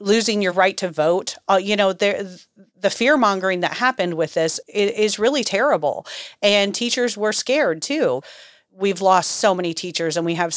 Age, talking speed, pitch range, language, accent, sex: 30-49, 185 wpm, 160-190 Hz, English, American, female